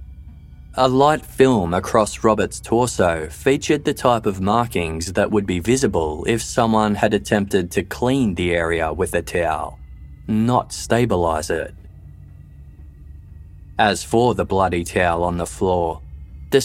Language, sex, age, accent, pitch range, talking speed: English, male, 20-39, Australian, 85-115 Hz, 135 wpm